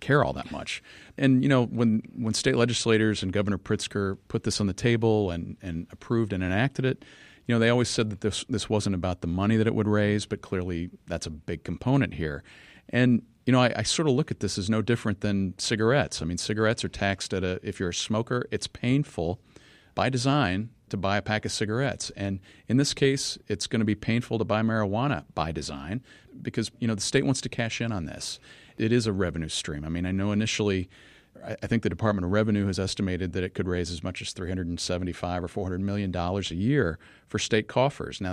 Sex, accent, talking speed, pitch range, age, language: male, American, 225 wpm, 95-115 Hz, 40-59, English